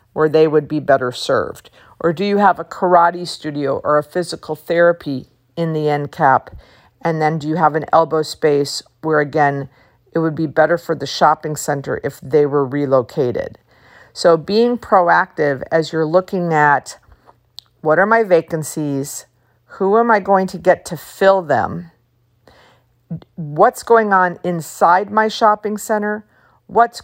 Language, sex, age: English, female, 50-69